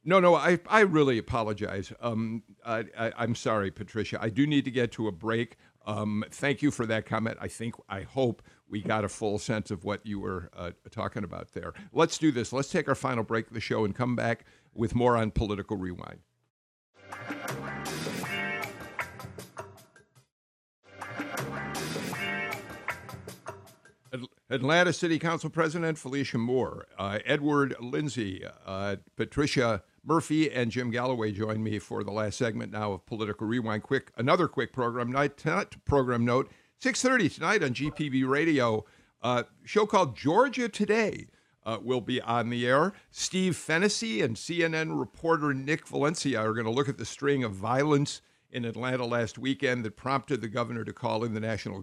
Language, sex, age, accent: English, male, 50-69, American